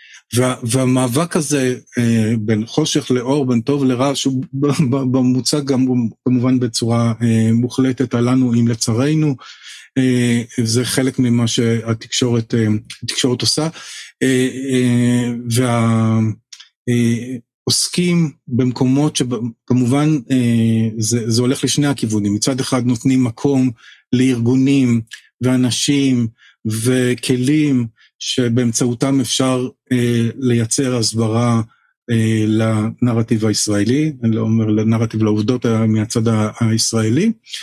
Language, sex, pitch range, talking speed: Hebrew, male, 115-130 Hz, 95 wpm